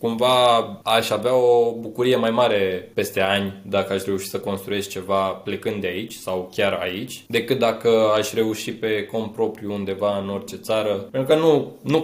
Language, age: Romanian, 20-39